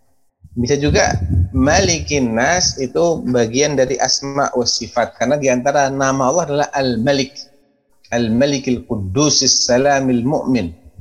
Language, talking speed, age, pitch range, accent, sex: Indonesian, 110 wpm, 30-49, 100-135 Hz, native, male